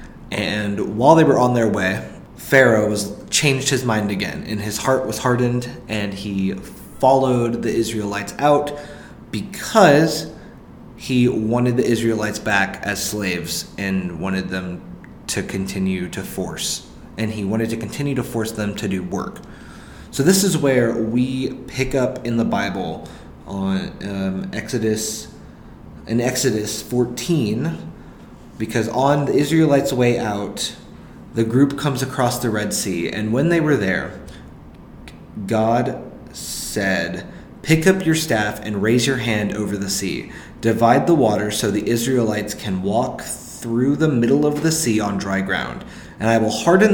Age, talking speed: 20-39, 150 wpm